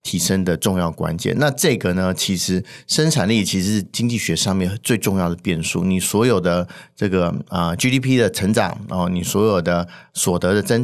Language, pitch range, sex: Chinese, 90-115 Hz, male